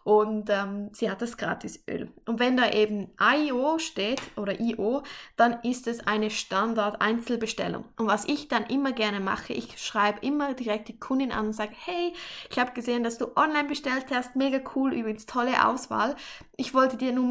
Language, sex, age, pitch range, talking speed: German, female, 10-29, 210-245 Hz, 185 wpm